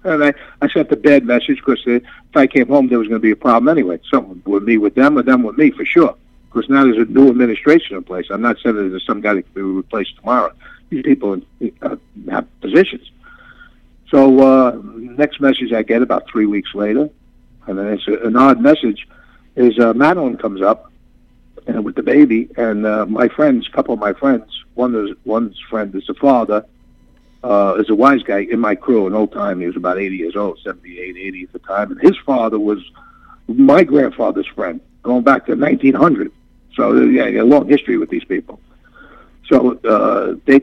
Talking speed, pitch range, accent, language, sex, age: 210 wpm, 95-150 Hz, American, English, male, 60-79